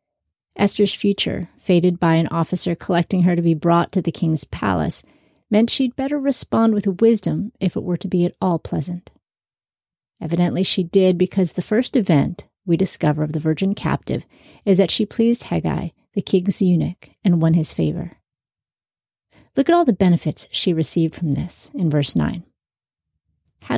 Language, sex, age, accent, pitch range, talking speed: English, female, 40-59, American, 160-200 Hz, 170 wpm